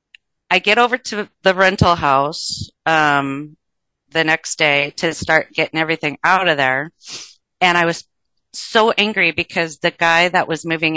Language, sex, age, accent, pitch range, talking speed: English, female, 40-59, American, 150-185 Hz, 160 wpm